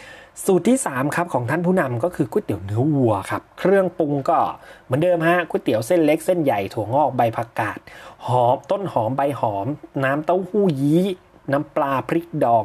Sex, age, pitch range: male, 30-49, 125-165 Hz